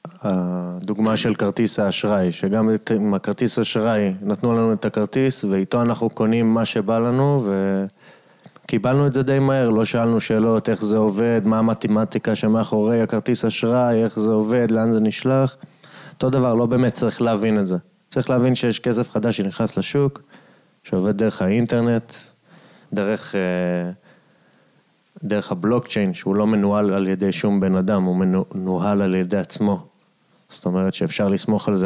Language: Hebrew